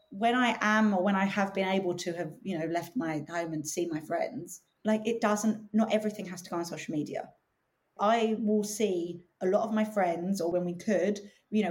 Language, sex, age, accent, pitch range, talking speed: English, female, 30-49, British, 190-245 Hz, 230 wpm